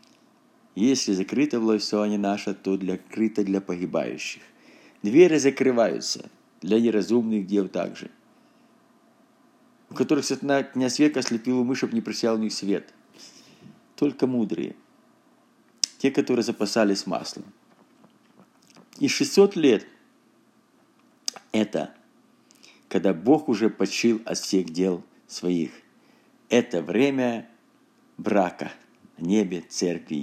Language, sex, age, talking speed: Russian, male, 50-69, 110 wpm